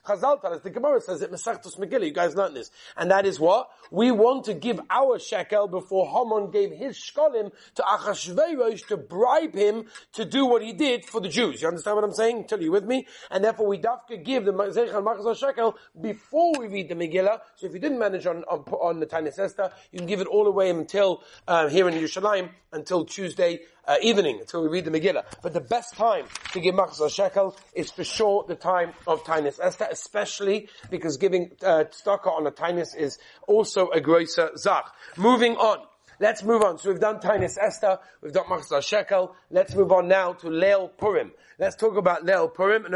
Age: 30-49